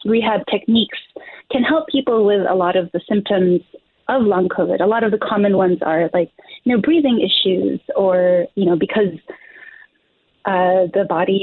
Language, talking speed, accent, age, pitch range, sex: English, 175 wpm, American, 20-39, 185-235 Hz, female